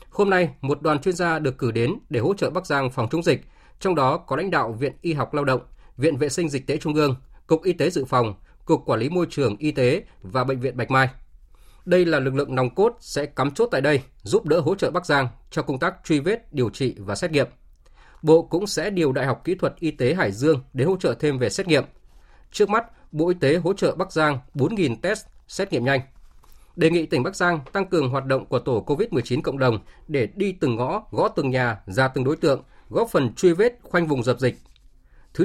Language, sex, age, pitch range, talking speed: Vietnamese, male, 20-39, 130-175 Hz, 245 wpm